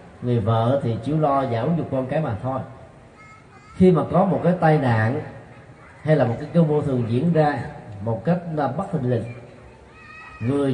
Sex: male